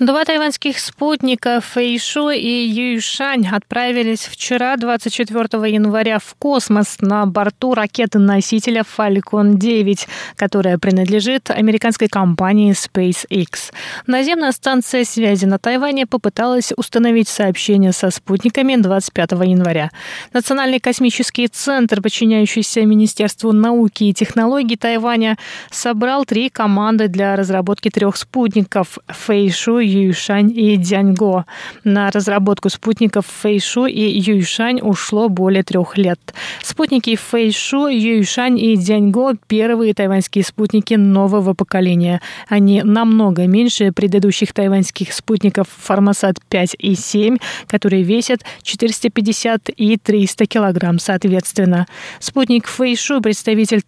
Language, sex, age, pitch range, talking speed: Russian, female, 20-39, 200-235 Hz, 110 wpm